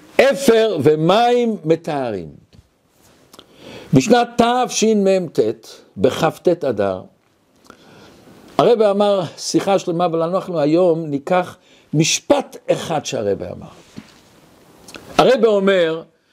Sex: male